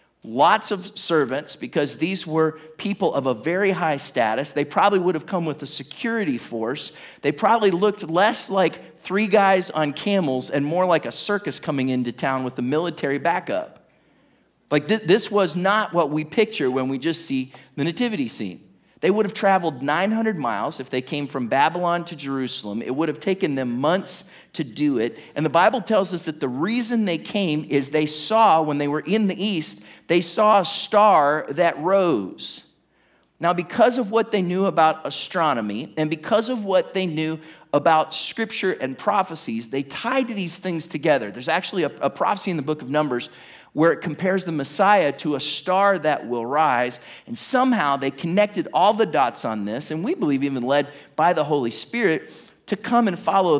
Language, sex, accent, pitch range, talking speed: English, male, American, 145-195 Hz, 190 wpm